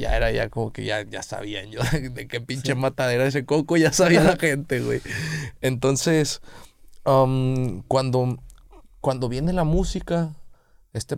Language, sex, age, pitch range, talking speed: Spanish, male, 30-49, 105-130 Hz, 150 wpm